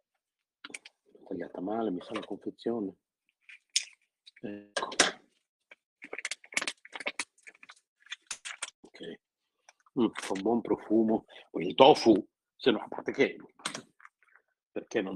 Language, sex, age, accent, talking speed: Italian, male, 50-69, native, 85 wpm